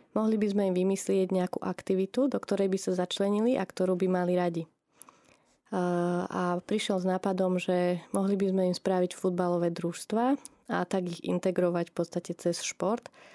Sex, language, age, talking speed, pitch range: female, Slovak, 20-39, 165 wpm, 180-200 Hz